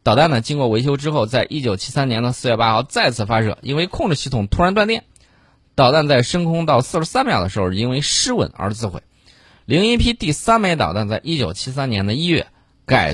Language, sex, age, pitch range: Chinese, male, 20-39, 105-145 Hz